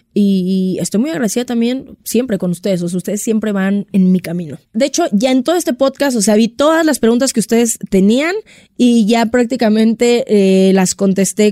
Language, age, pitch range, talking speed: Spanish, 20-39, 195-235 Hz, 200 wpm